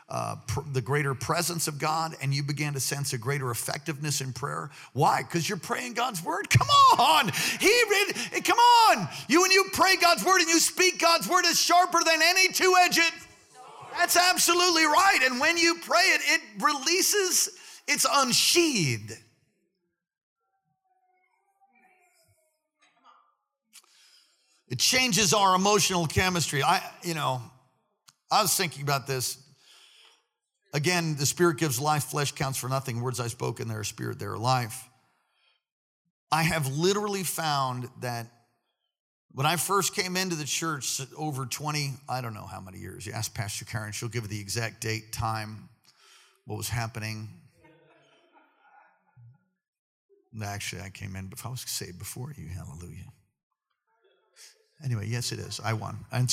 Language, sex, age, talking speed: English, male, 50-69, 150 wpm